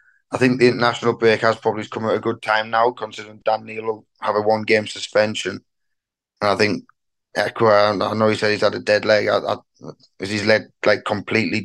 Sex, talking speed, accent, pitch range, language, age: male, 205 wpm, British, 105-120 Hz, English, 10-29